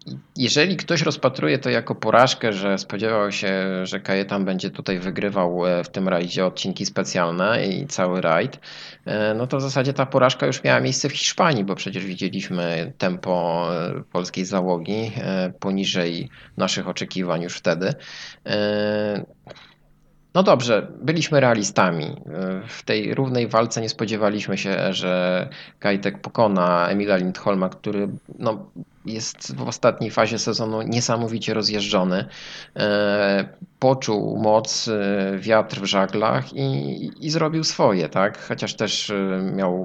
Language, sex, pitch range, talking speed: Polish, male, 95-115 Hz, 120 wpm